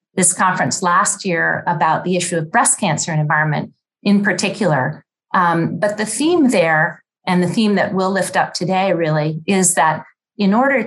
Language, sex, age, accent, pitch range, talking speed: English, female, 40-59, American, 170-205 Hz, 175 wpm